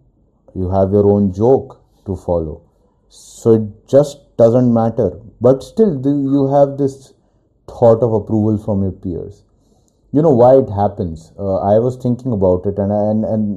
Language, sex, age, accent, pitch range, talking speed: English, male, 30-49, Indian, 90-120 Hz, 170 wpm